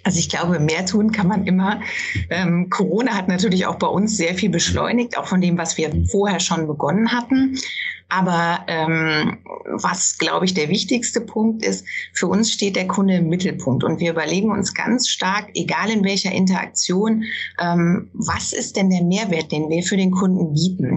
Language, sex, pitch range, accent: German, female, 175-210 Hz, German